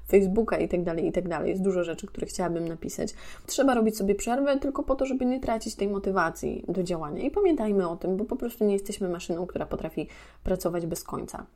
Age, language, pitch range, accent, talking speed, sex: 20-39, Polish, 180-225 Hz, native, 220 wpm, female